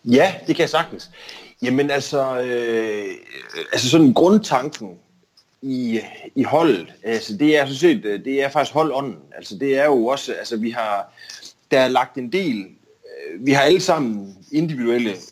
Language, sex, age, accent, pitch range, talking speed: Danish, male, 30-49, native, 110-155 Hz, 170 wpm